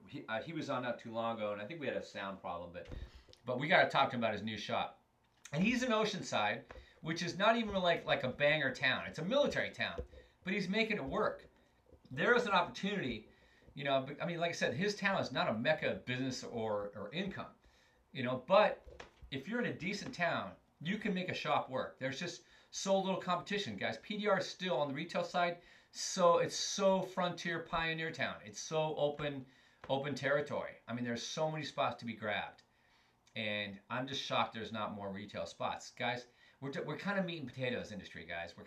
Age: 40-59